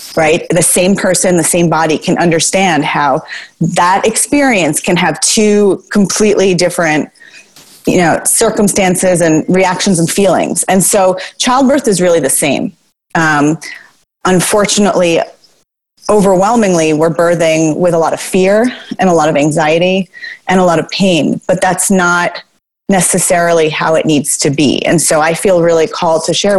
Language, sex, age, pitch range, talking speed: English, female, 30-49, 165-195 Hz, 155 wpm